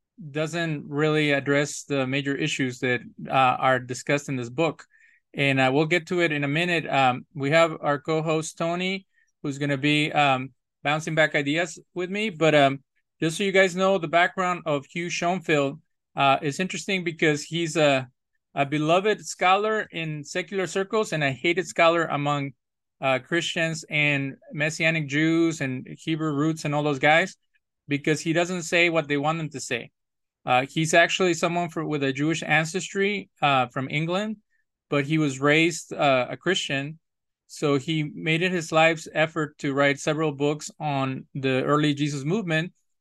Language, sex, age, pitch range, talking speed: English, male, 30-49, 145-175 Hz, 170 wpm